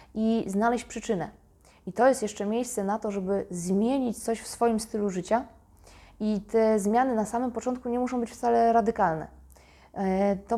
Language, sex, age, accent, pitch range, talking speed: Polish, female, 20-39, native, 185-225 Hz, 165 wpm